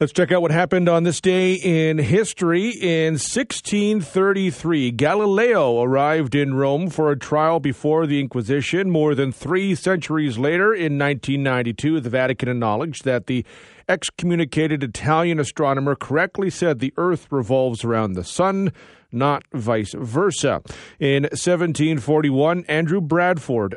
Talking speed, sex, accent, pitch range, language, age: 130 wpm, male, American, 130-165 Hz, English, 40-59